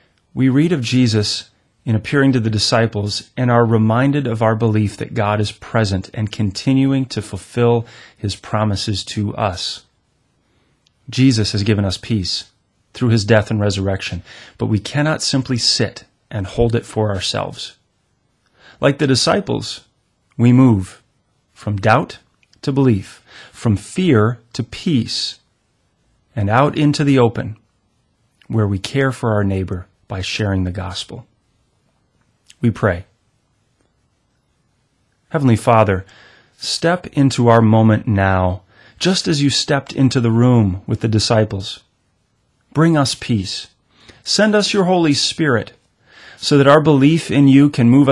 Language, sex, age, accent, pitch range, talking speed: English, male, 30-49, American, 105-130 Hz, 135 wpm